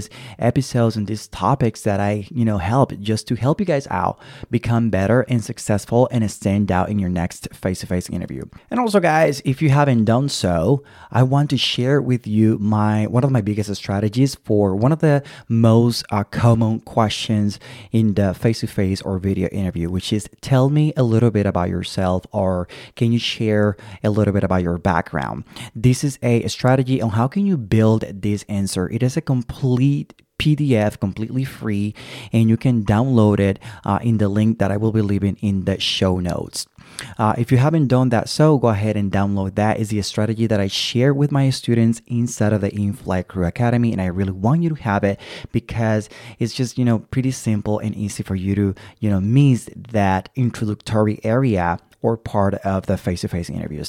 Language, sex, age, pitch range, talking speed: English, male, 20-39, 100-125 Hz, 200 wpm